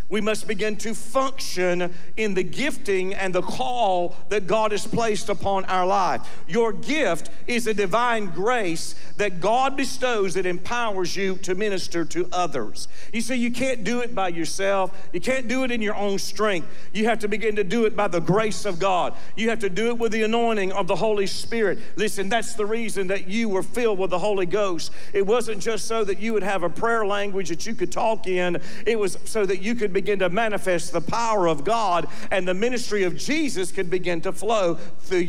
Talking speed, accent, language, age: 215 wpm, American, English, 50-69